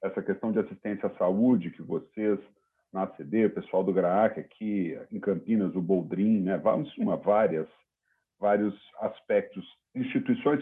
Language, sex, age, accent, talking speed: Portuguese, male, 50-69, Brazilian, 155 wpm